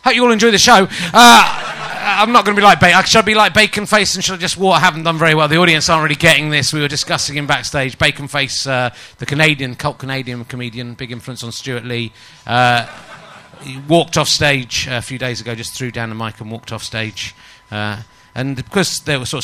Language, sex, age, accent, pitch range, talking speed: English, male, 30-49, British, 125-175 Hz, 240 wpm